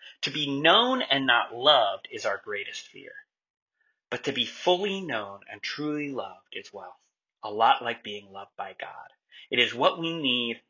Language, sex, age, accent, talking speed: English, male, 30-49, American, 180 wpm